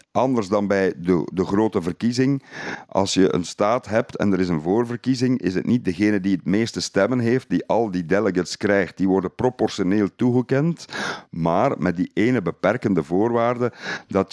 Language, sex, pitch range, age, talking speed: Dutch, male, 95-120 Hz, 50-69, 175 wpm